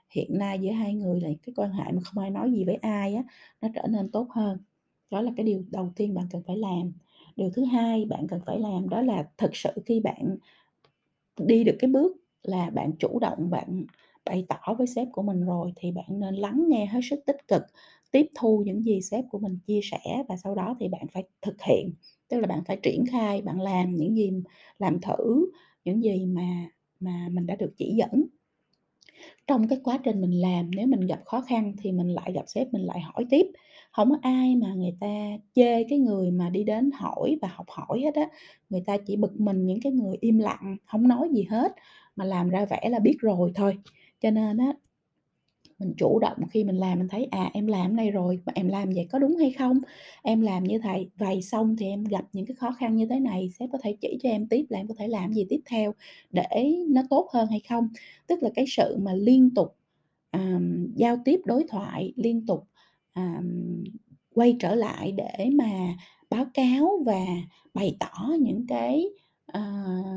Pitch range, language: 185-240 Hz, Vietnamese